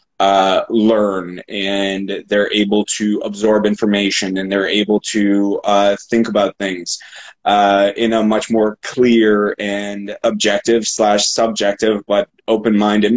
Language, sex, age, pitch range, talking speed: English, male, 20-39, 100-110 Hz, 130 wpm